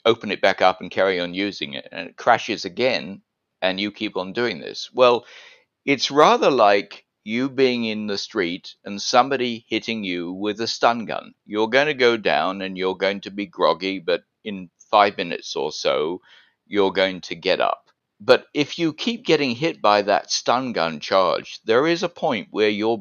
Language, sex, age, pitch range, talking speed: English, male, 50-69, 95-115 Hz, 195 wpm